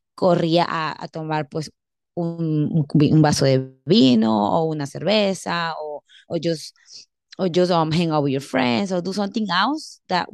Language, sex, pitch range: English, female, 150-180 Hz